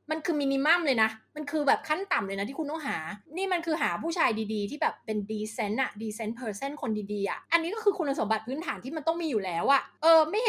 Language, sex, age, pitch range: Thai, female, 20-39, 210-310 Hz